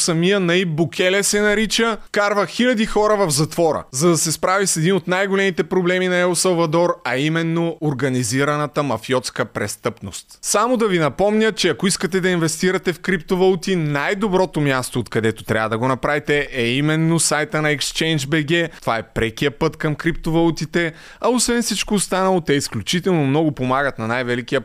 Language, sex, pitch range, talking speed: Bulgarian, male, 140-175 Hz, 160 wpm